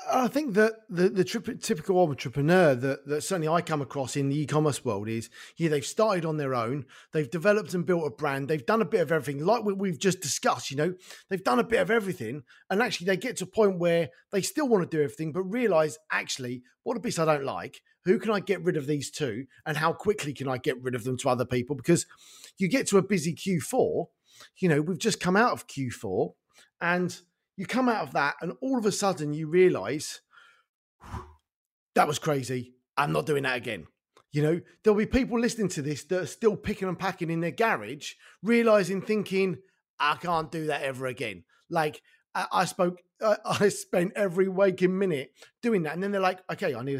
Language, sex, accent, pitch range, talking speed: English, male, British, 150-200 Hz, 215 wpm